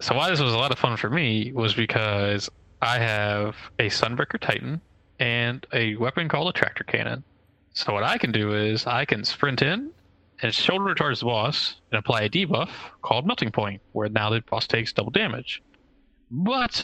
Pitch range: 105-135 Hz